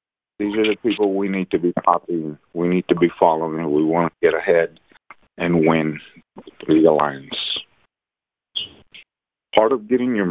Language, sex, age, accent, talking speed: English, male, 50-69, American, 155 wpm